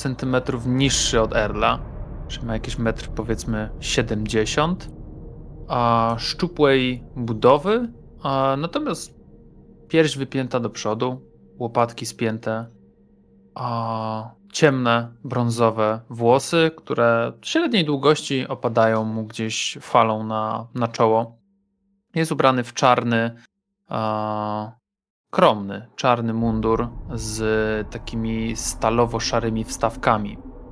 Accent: native